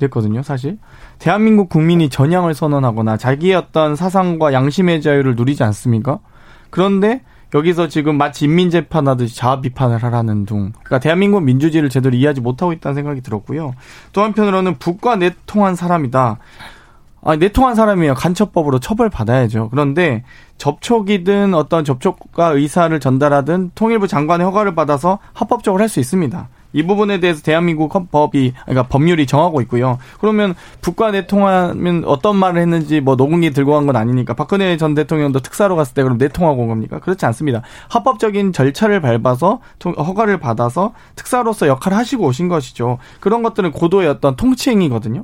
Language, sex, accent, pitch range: Korean, male, native, 135-190 Hz